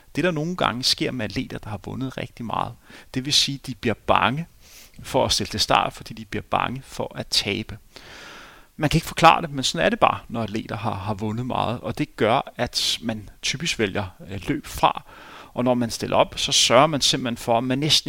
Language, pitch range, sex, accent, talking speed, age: Danish, 110-140 Hz, male, native, 230 wpm, 30-49